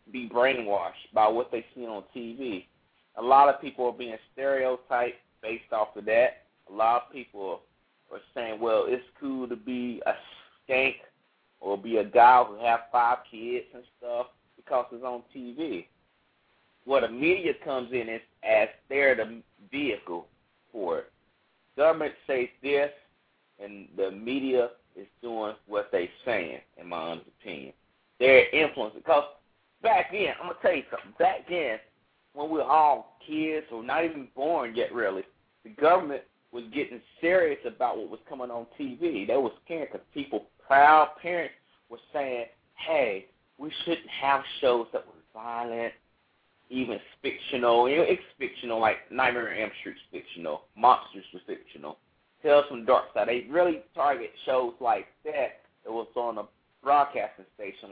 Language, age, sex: English, 30-49, male